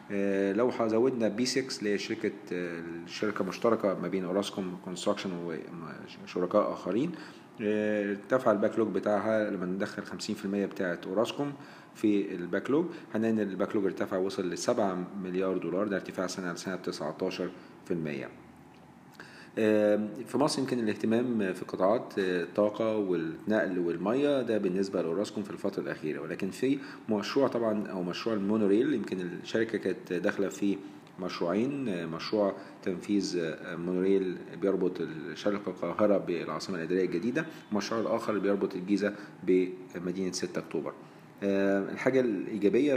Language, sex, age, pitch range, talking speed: Arabic, male, 40-59, 95-110 Hz, 115 wpm